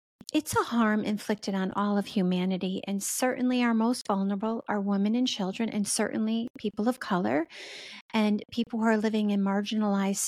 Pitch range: 200-240 Hz